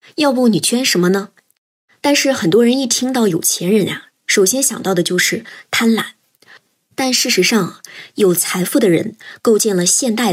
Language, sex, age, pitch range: Chinese, male, 20-39, 185-245 Hz